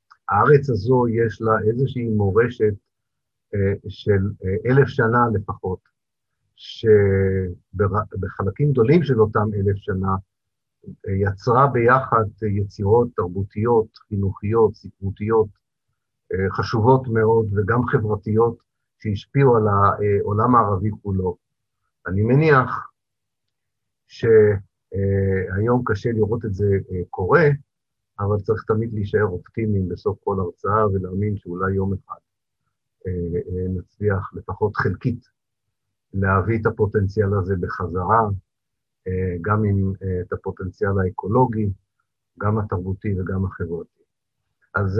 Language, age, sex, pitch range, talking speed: Hebrew, 50-69, male, 95-115 Hz, 95 wpm